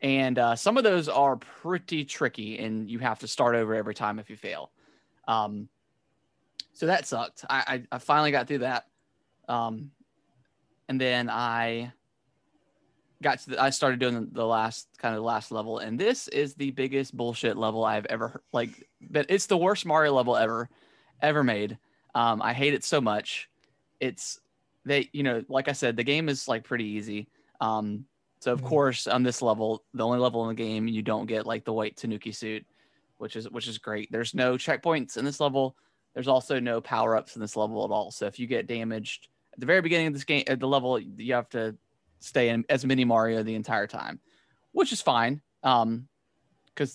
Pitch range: 110-135 Hz